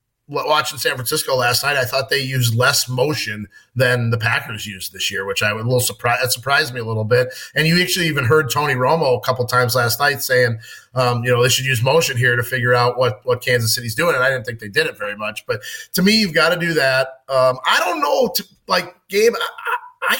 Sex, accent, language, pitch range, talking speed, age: male, American, English, 125-180 Hz, 245 wpm, 30-49